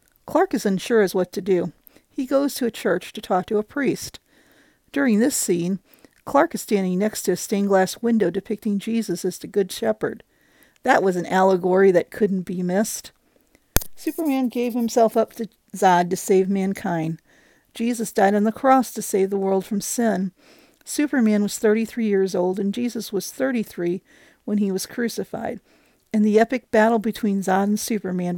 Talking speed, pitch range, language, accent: 180 wpm, 190-235 Hz, English, American